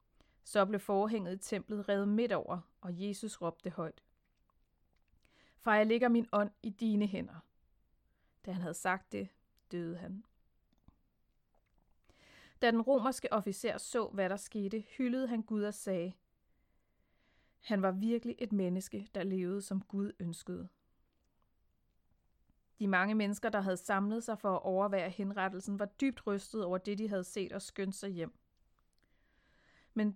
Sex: female